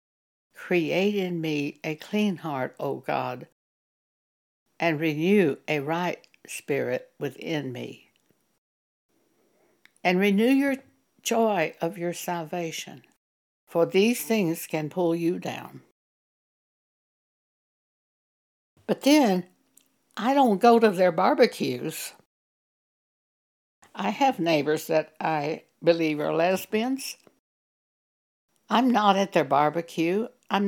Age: 60-79